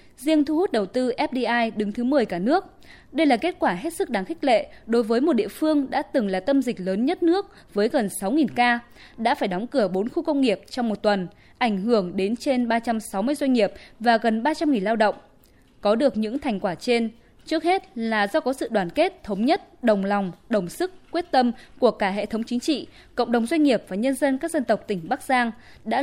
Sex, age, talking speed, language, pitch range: female, 20-39, 235 wpm, Vietnamese, 210-290 Hz